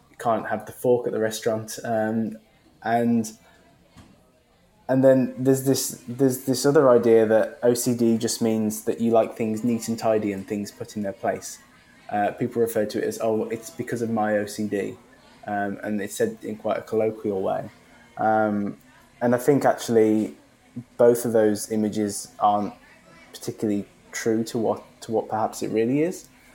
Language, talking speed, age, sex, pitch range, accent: English, 170 wpm, 20-39, male, 105-120 Hz, British